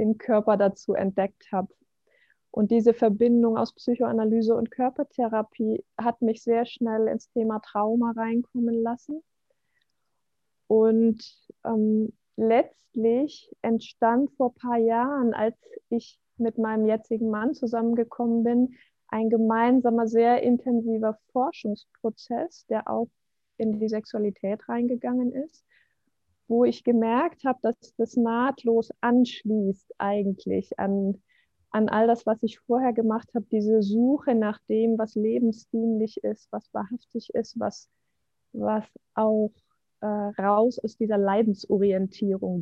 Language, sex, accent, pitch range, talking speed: German, female, German, 215-240 Hz, 115 wpm